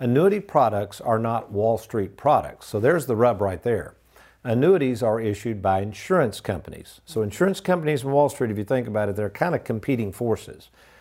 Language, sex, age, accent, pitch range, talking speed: English, male, 50-69, American, 110-135 Hz, 190 wpm